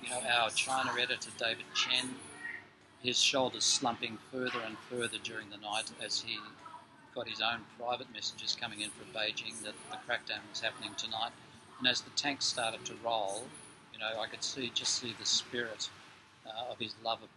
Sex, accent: male, Australian